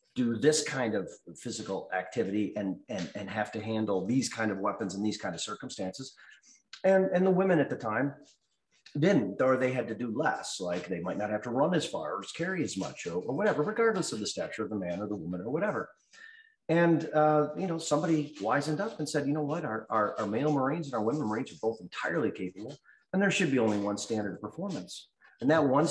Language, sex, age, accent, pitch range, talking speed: English, male, 40-59, American, 110-170 Hz, 230 wpm